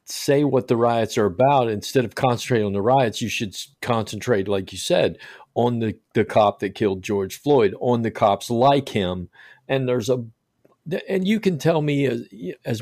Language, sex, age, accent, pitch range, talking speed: English, male, 40-59, American, 110-135 Hz, 190 wpm